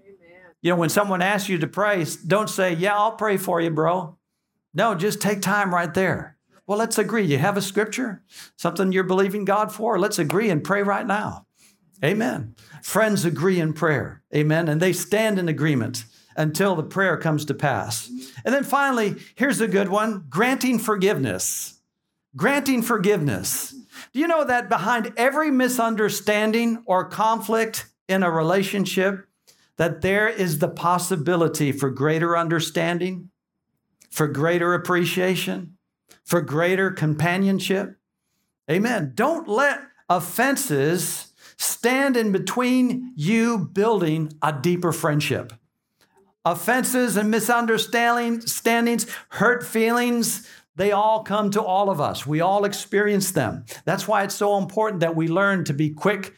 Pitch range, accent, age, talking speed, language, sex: 170-220 Hz, American, 60-79, 140 wpm, English, male